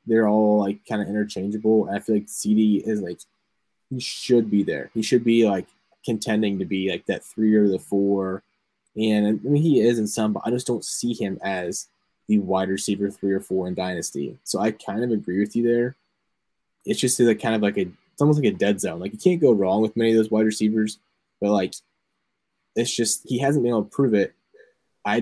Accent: American